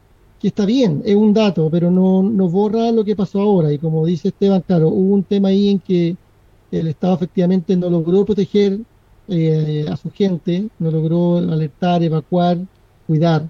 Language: Spanish